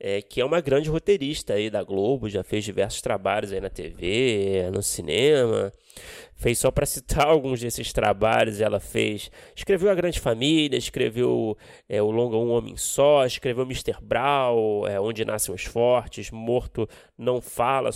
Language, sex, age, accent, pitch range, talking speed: Portuguese, male, 20-39, Brazilian, 115-160 Hz, 165 wpm